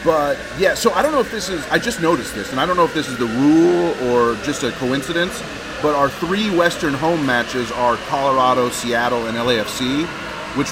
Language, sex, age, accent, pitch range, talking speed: English, male, 30-49, American, 115-145 Hz, 215 wpm